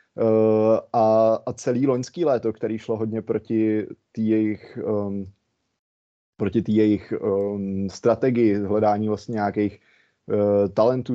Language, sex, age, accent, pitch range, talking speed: Czech, male, 30-49, native, 105-120 Hz, 125 wpm